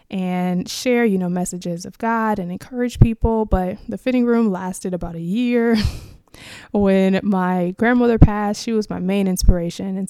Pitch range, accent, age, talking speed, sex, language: 185-220 Hz, American, 20-39, 165 wpm, female, English